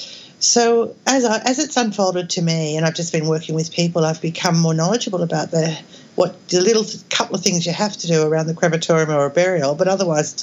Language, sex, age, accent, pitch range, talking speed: English, female, 50-69, Australian, 175-230 Hz, 230 wpm